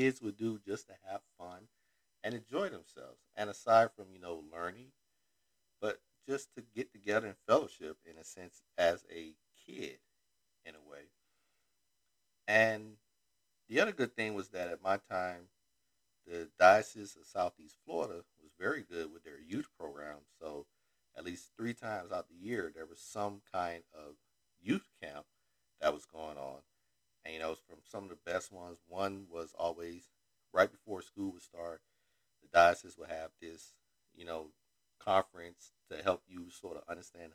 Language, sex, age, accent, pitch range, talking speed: English, male, 50-69, American, 80-100 Hz, 165 wpm